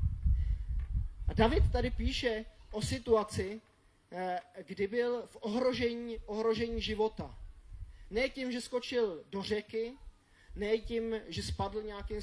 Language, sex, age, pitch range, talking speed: Czech, male, 20-39, 155-210 Hz, 115 wpm